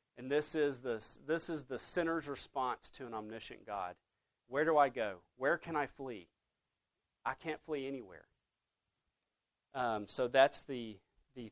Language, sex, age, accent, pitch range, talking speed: English, male, 40-59, American, 105-135 Hz, 155 wpm